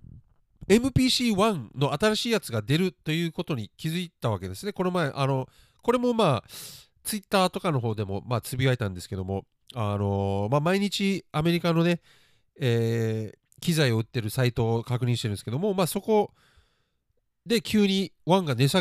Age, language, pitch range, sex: 40-59, Japanese, 120-195 Hz, male